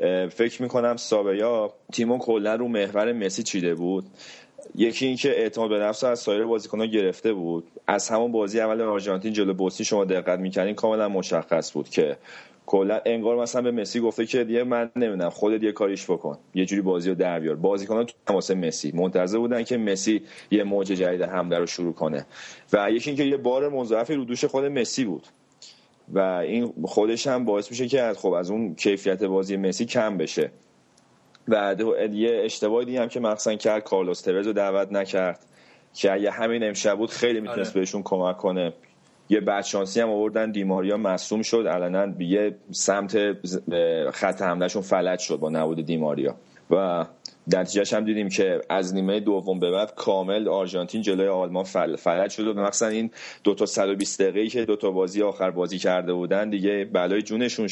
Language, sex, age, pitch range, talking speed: Persian, male, 30-49, 95-115 Hz, 180 wpm